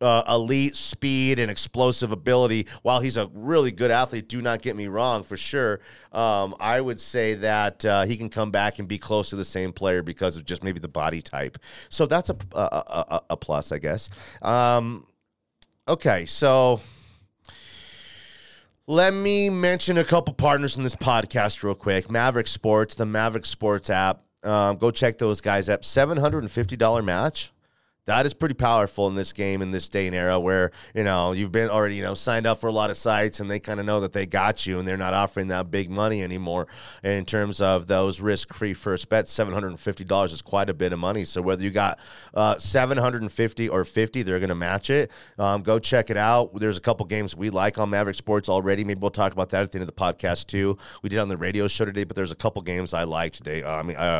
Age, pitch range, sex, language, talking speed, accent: 30-49, 95-115 Hz, male, English, 220 wpm, American